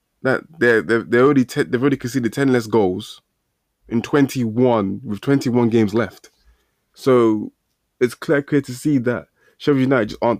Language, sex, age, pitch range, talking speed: English, male, 20-39, 100-130 Hz, 180 wpm